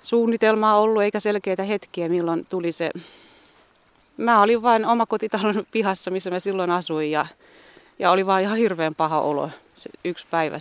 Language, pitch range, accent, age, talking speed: Finnish, 170-210 Hz, native, 30-49, 160 wpm